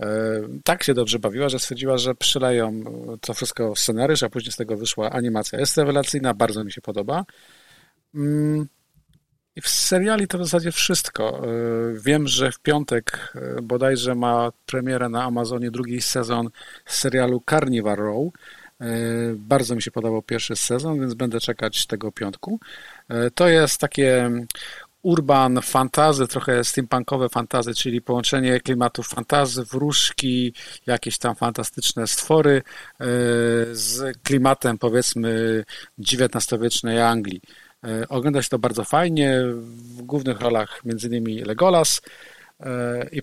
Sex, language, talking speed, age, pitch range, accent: male, Polish, 125 wpm, 50-69, 115-140 Hz, native